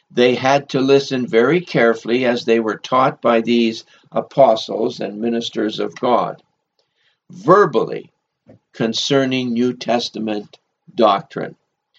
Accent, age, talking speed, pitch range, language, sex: American, 60-79, 110 wpm, 115-145 Hz, English, male